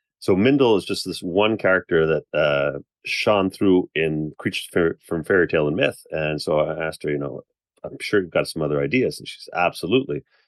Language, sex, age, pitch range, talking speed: English, male, 30-49, 75-90 Hz, 205 wpm